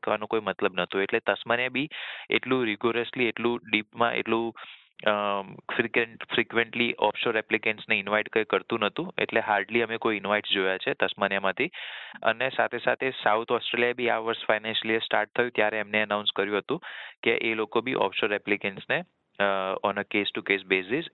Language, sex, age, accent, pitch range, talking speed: Gujarati, male, 20-39, native, 100-115 Hz, 140 wpm